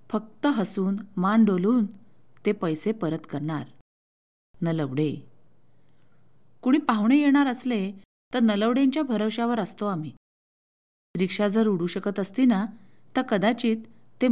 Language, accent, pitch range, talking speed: Marathi, native, 170-235 Hz, 115 wpm